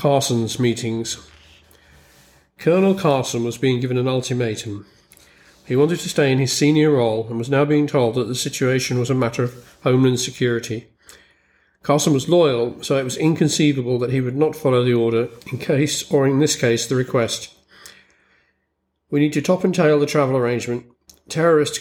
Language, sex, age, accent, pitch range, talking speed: English, male, 40-59, British, 120-145 Hz, 175 wpm